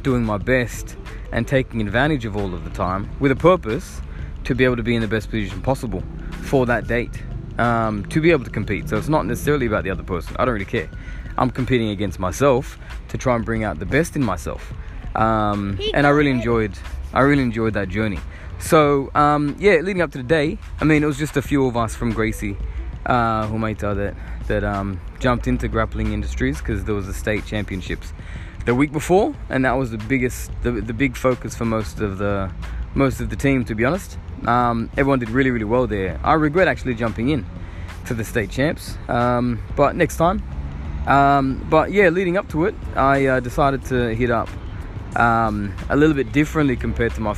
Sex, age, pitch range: male, 20-39, 100-130 Hz